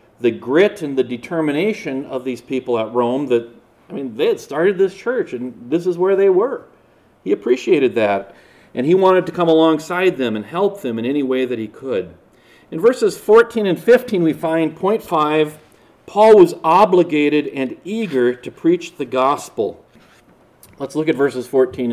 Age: 40-59